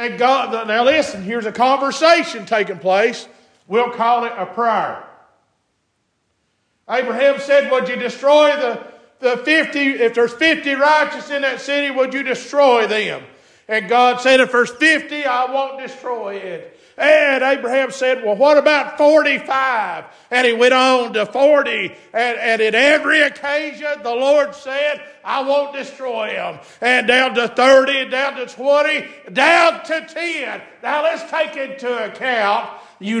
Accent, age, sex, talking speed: American, 50-69, male, 150 wpm